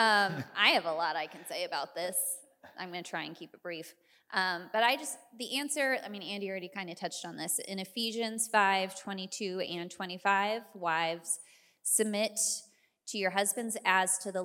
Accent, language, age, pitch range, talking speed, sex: American, English, 20-39, 170-210 Hz, 195 wpm, female